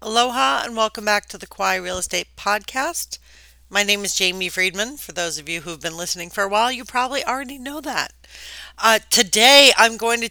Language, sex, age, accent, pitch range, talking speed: English, female, 40-59, American, 165-210 Hz, 205 wpm